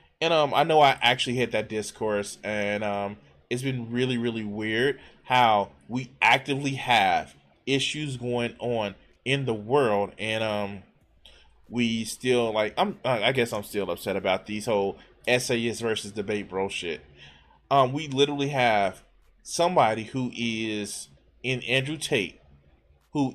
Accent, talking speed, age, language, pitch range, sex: American, 145 wpm, 20-39, English, 100-130 Hz, male